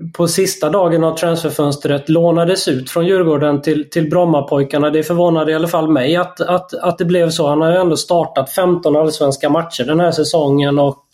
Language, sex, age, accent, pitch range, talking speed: Swedish, male, 20-39, native, 155-180 Hz, 195 wpm